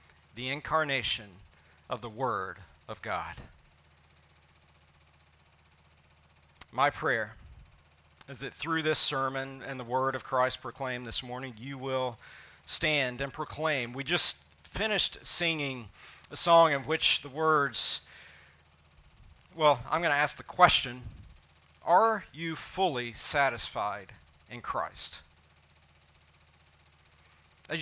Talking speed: 110 wpm